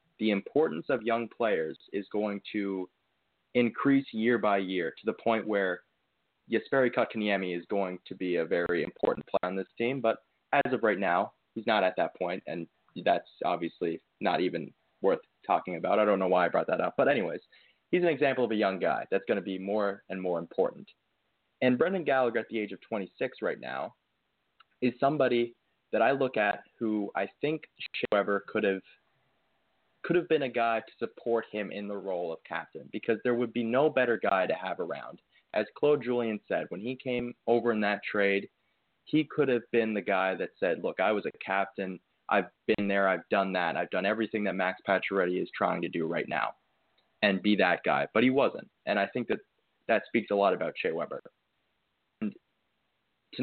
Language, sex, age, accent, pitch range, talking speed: English, male, 20-39, American, 100-120 Hz, 200 wpm